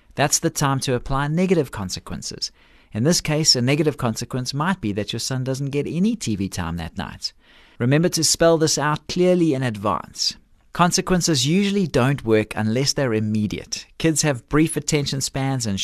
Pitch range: 115-160 Hz